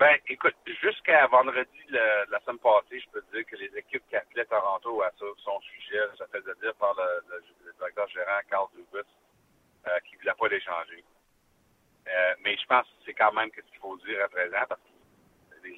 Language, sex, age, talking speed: French, male, 60-79, 205 wpm